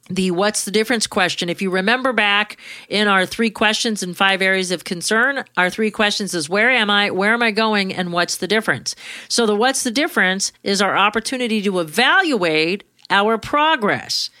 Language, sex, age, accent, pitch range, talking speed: English, female, 40-59, American, 180-230 Hz, 185 wpm